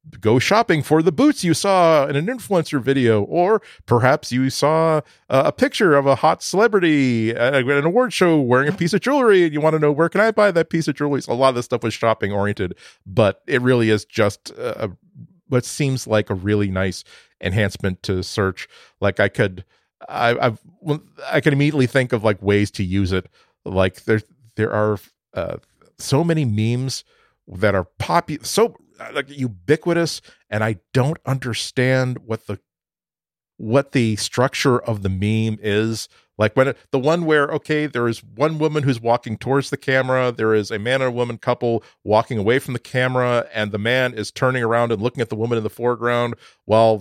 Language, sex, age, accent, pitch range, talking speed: English, male, 40-59, American, 110-145 Hz, 195 wpm